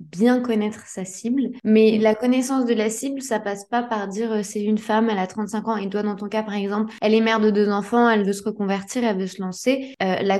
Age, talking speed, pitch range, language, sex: 20-39, 260 wpm, 210-245 Hz, French, female